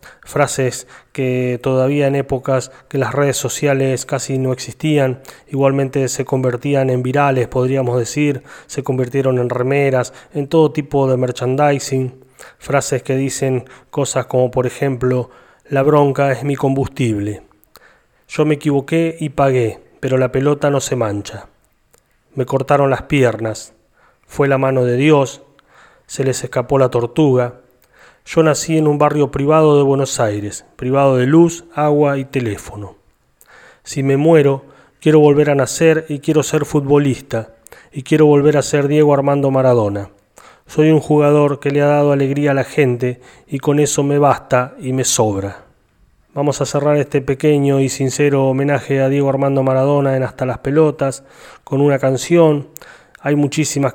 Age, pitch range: 30-49, 130-145 Hz